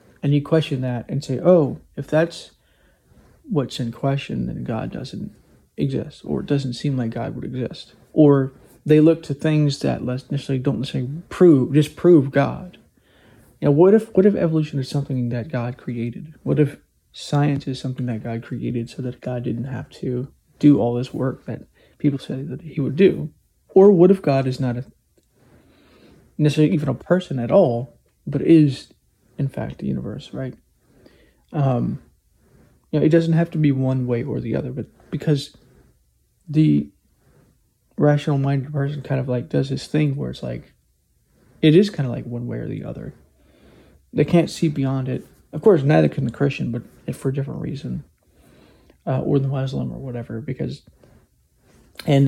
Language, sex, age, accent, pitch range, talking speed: English, male, 30-49, American, 125-150 Hz, 175 wpm